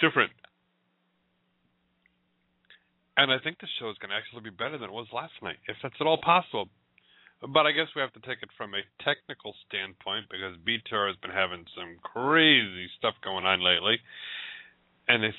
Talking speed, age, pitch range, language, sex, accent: 180 wpm, 40-59, 95-155 Hz, English, male, American